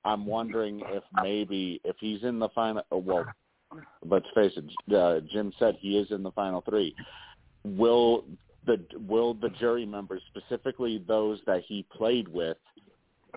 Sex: male